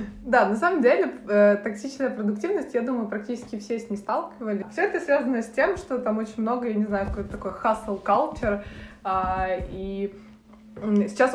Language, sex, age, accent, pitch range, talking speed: Russian, female, 20-39, native, 185-215 Hz, 165 wpm